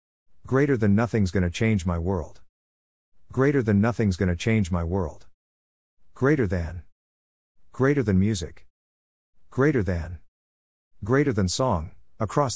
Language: English